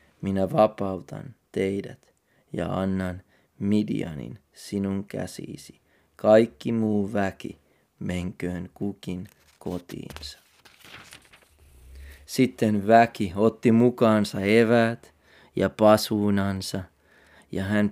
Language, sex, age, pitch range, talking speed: Finnish, male, 30-49, 95-125 Hz, 75 wpm